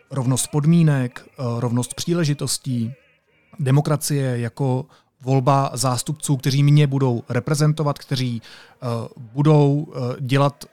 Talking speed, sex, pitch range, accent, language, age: 85 wpm, male, 130-165 Hz, native, Czech, 30-49